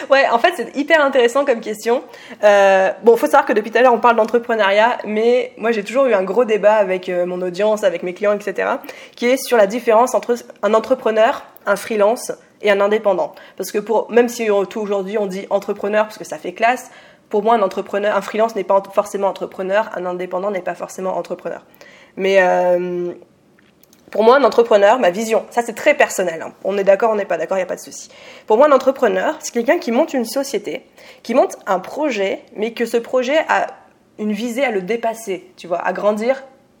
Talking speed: 220 wpm